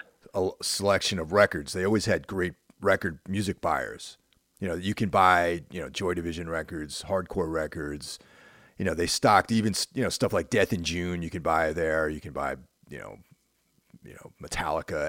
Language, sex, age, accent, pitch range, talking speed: English, male, 30-49, American, 85-110 Hz, 185 wpm